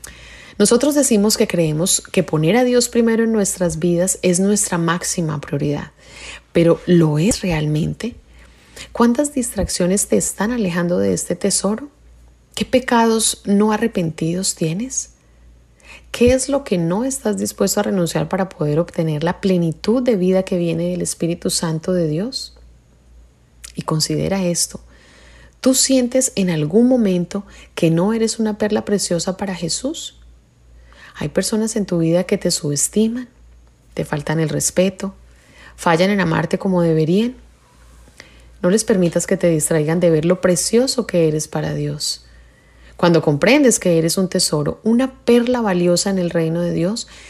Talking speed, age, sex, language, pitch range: 150 wpm, 30-49, female, English, 160-210 Hz